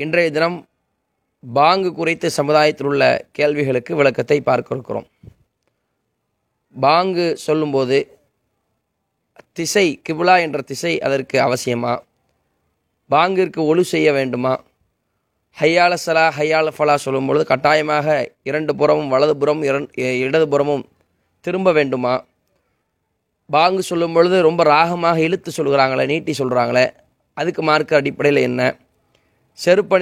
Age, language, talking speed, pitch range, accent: 20-39, English, 95 wpm, 130-170 Hz, Indian